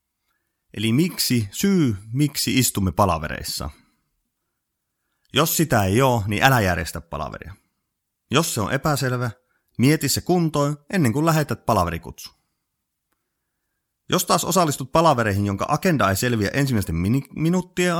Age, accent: 30-49, native